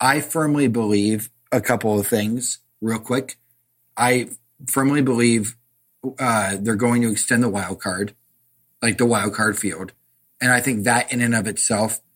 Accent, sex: American, male